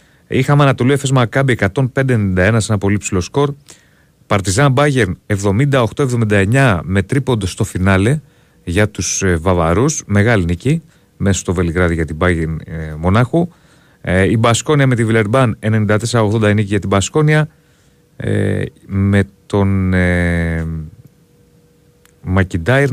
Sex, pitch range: male, 95-135 Hz